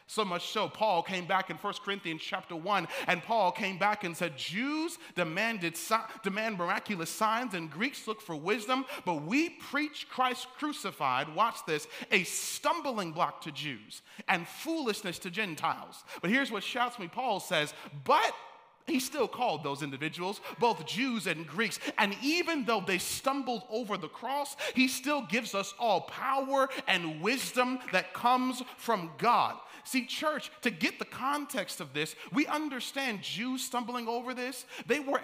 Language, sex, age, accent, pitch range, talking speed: English, male, 30-49, American, 195-275 Hz, 165 wpm